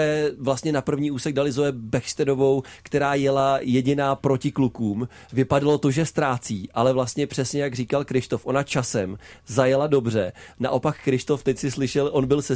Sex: male